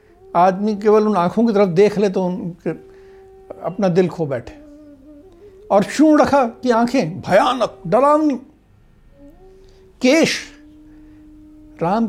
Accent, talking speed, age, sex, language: native, 115 wpm, 60-79, male, Hindi